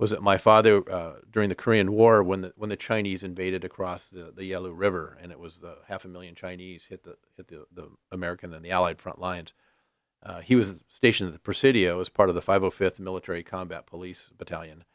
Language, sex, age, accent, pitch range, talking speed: English, male, 50-69, American, 85-100 Hz, 215 wpm